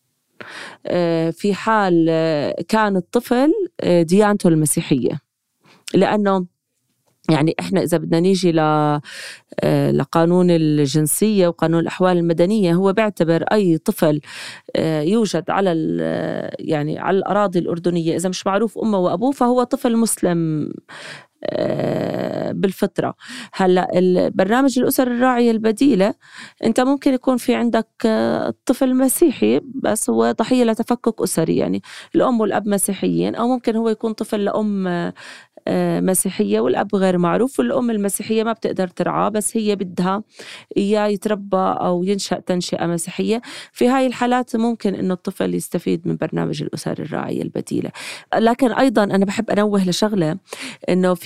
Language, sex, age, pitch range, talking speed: Arabic, female, 30-49, 170-225 Hz, 115 wpm